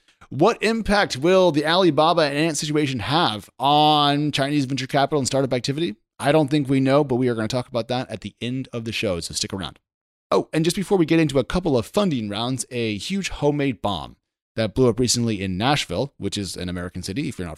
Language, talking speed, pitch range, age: English, 230 wpm, 110-155 Hz, 30-49